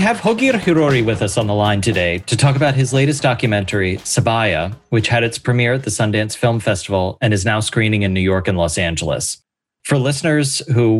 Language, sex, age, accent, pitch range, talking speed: English, male, 30-49, American, 105-135 Hz, 215 wpm